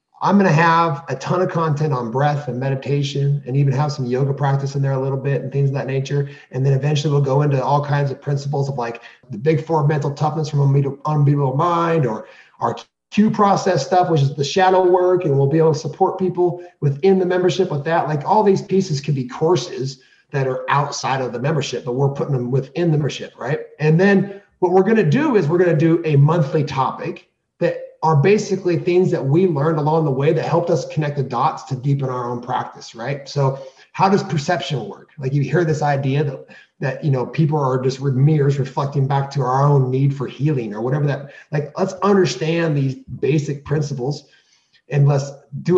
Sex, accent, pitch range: male, American, 140-170 Hz